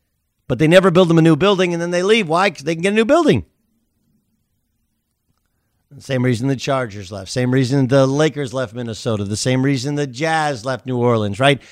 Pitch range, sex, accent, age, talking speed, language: 120-180 Hz, male, American, 50-69, 210 wpm, English